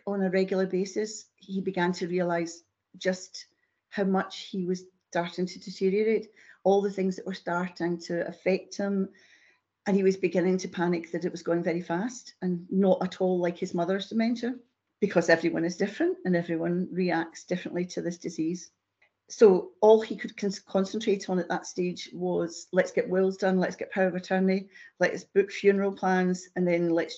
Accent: British